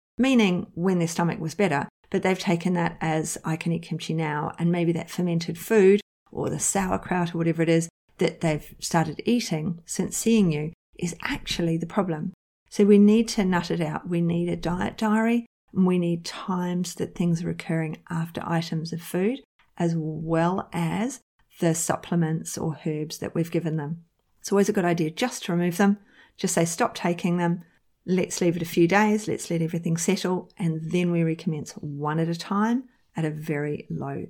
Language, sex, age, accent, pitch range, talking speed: English, female, 40-59, Australian, 165-200 Hz, 190 wpm